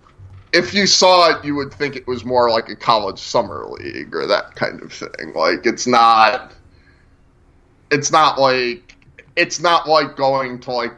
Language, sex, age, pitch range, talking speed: English, male, 20-39, 115-135 Hz, 175 wpm